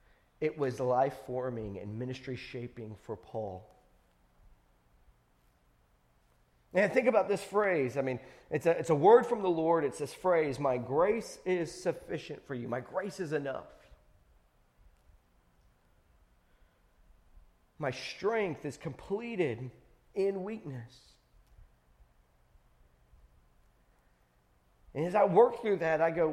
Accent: American